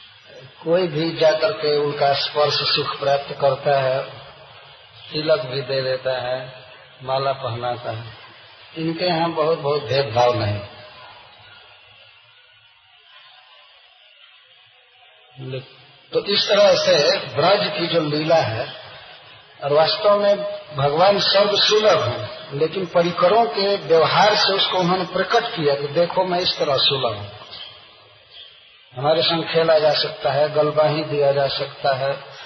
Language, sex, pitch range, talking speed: Hindi, male, 130-170 Hz, 125 wpm